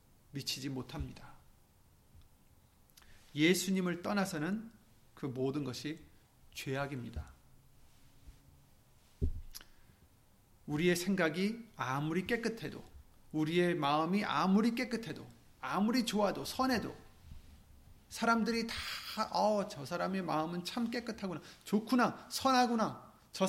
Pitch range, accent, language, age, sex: 140-210 Hz, native, Korean, 40-59, male